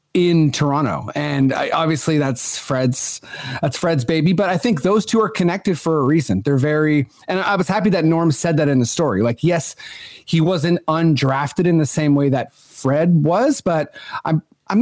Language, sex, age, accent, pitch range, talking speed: English, male, 30-49, American, 135-170 Hz, 190 wpm